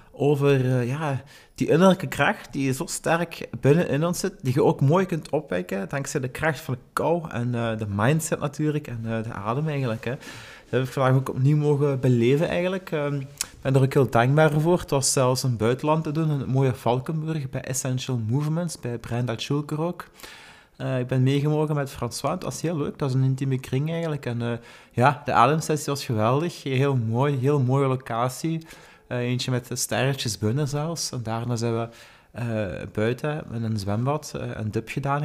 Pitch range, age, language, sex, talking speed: 125-155 Hz, 30-49, Dutch, male, 200 wpm